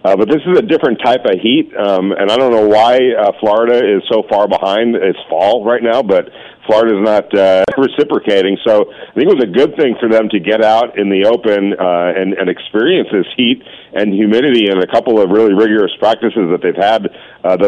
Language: English